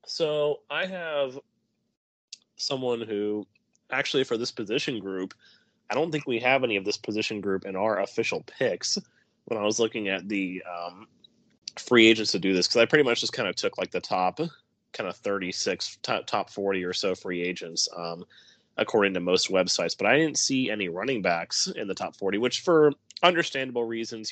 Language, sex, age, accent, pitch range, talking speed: English, male, 30-49, American, 95-120 Hz, 190 wpm